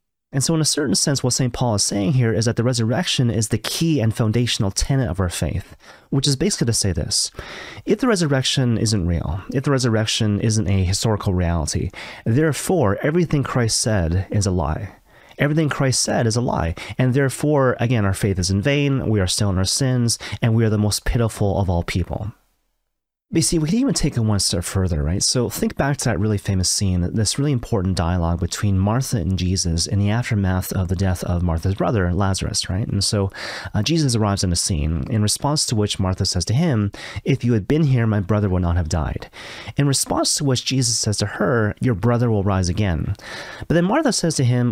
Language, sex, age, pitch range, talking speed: English, male, 30-49, 95-130 Hz, 220 wpm